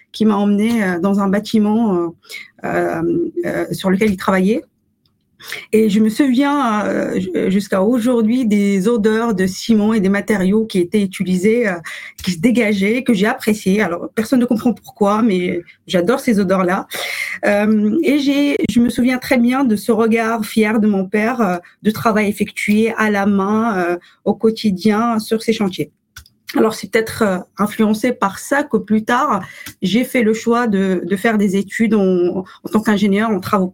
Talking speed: 175 wpm